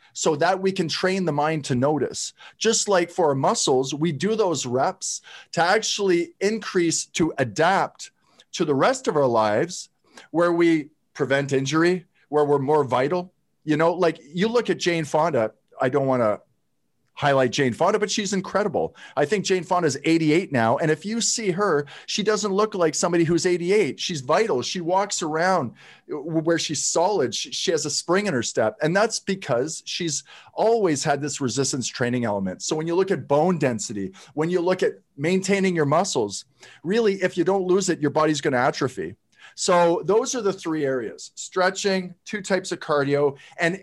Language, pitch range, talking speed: English, 145-185 Hz, 185 wpm